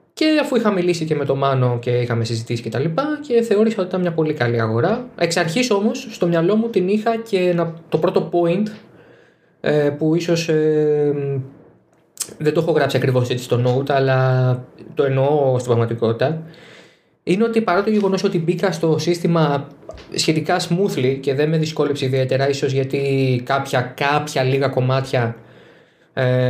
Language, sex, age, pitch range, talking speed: Greek, male, 20-39, 125-170 Hz, 165 wpm